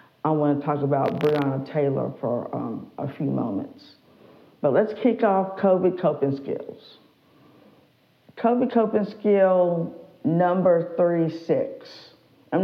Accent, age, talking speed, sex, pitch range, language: American, 50-69, 115 wpm, female, 145-185 Hz, English